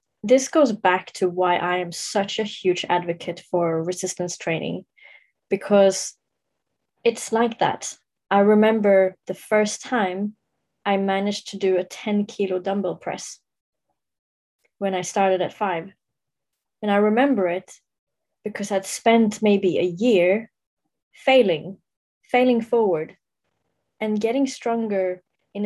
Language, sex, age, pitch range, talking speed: English, female, 20-39, 180-215 Hz, 125 wpm